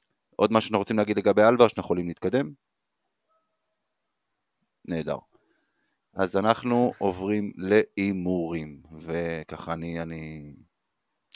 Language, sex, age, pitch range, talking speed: Hebrew, male, 20-39, 85-100 Hz, 95 wpm